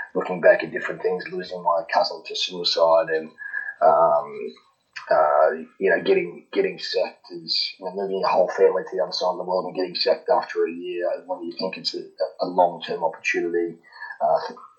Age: 30-49